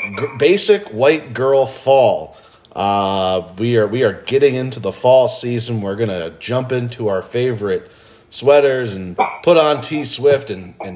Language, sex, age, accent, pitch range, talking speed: English, male, 30-49, American, 110-145 Hz, 160 wpm